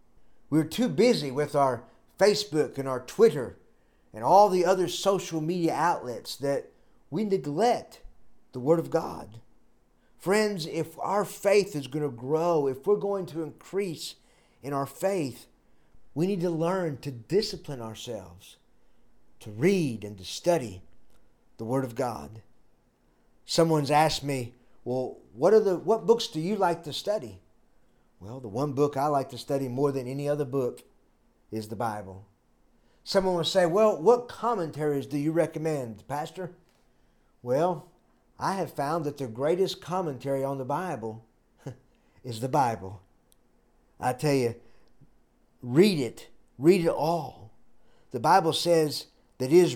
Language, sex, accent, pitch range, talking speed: English, male, American, 125-180 Hz, 150 wpm